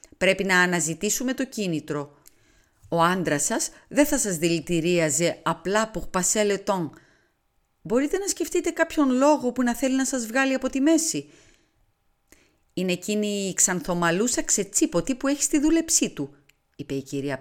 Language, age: Greek, 30-49